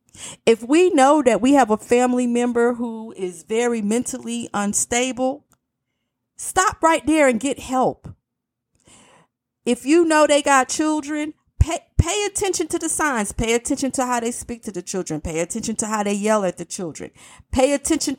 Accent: American